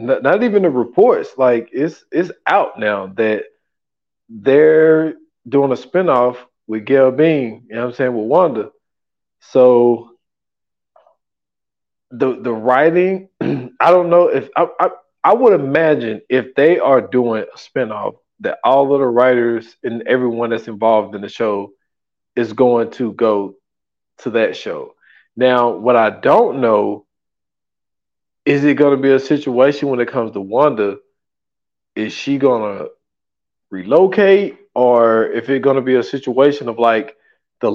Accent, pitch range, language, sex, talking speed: American, 115-170 Hz, English, male, 150 wpm